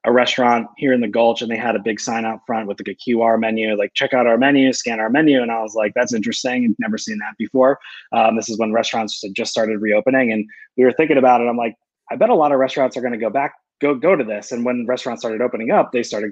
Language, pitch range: English, 115-140 Hz